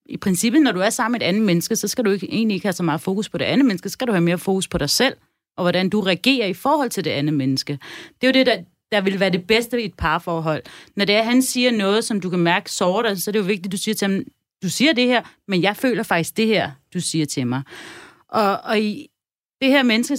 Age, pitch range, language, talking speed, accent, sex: 30-49, 180-245 Hz, Danish, 290 wpm, native, female